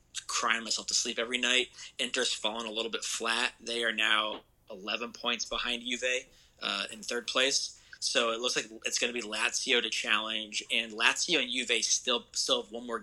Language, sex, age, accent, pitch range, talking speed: English, male, 20-39, American, 110-120 Hz, 200 wpm